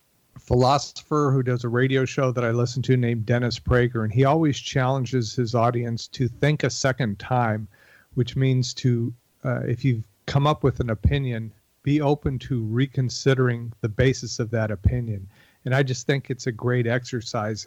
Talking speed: 175 wpm